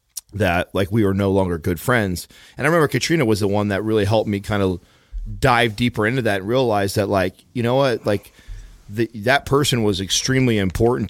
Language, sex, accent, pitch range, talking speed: English, male, American, 95-110 Hz, 205 wpm